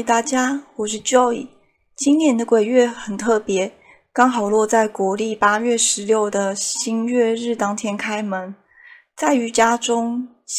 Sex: female